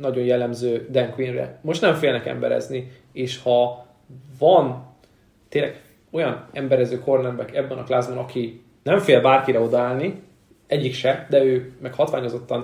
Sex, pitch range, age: male, 120-135 Hz, 20-39